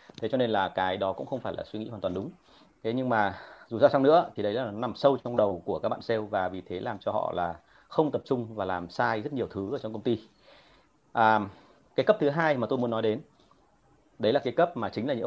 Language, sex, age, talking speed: Vietnamese, male, 30-49, 285 wpm